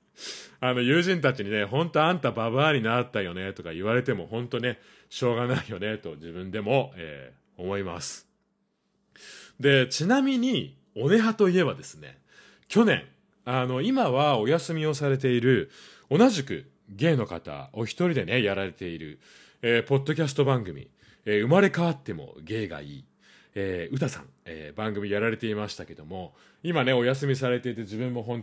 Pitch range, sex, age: 95-145 Hz, male, 30-49